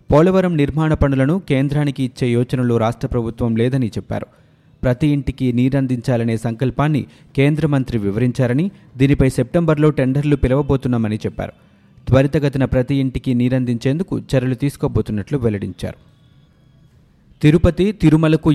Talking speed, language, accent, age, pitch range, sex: 100 wpm, Telugu, native, 30-49, 120-145 Hz, male